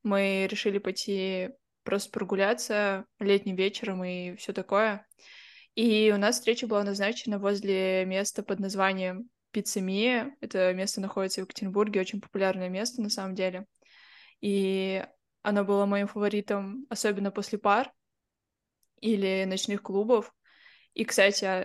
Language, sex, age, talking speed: Russian, female, 20-39, 125 wpm